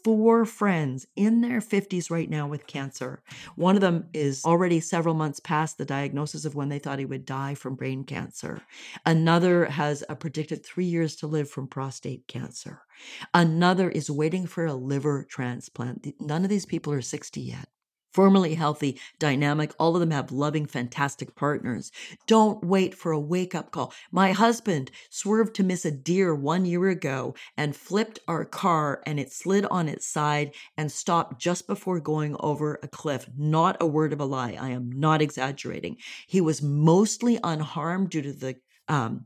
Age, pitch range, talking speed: 40-59, 145-180 Hz, 175 wpm